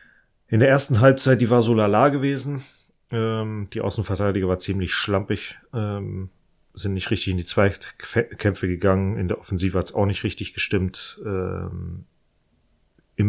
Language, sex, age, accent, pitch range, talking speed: German, male, 40-59, German, 85-100 Hz, 155 wpm